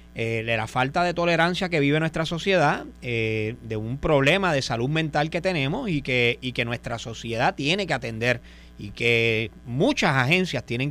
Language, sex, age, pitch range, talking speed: Spanish, male, 30-49, 120-170 Hz, 175 wpm